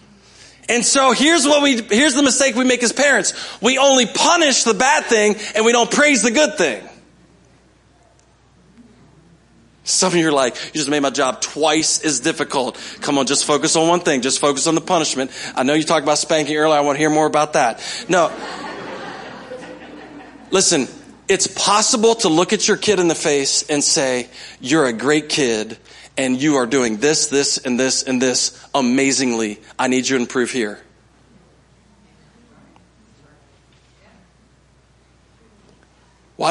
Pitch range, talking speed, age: 140-225 Hz, 165 wpm, 40-59